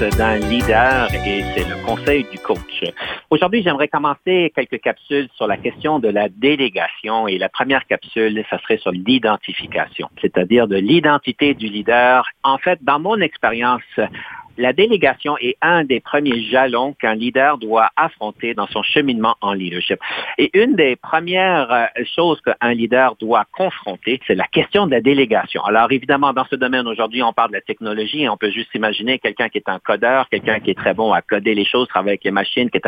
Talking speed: 190 wpm